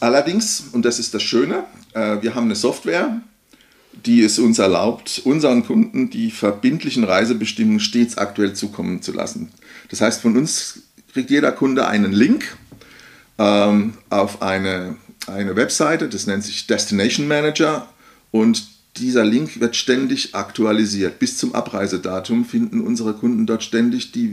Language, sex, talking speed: German, male, 140 wpm